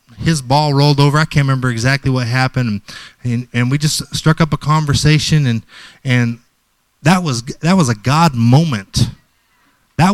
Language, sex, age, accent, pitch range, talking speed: English, male, 30-49, American, 125-155 Hz, 170 wpm